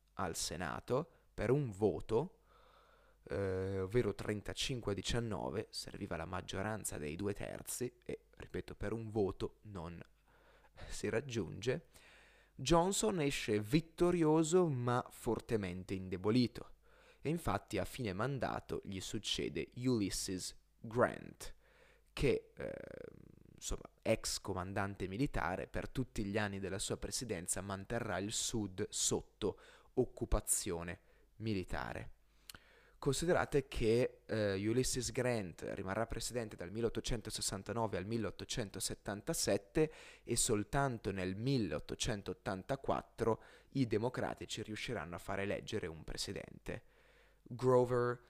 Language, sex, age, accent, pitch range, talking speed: Italian, male, 20-39, native, 100-135 Hz, 100 wpm